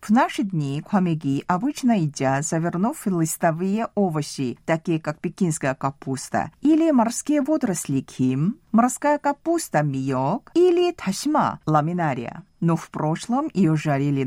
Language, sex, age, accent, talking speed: Russian, female, 40-59, native, 120 wpm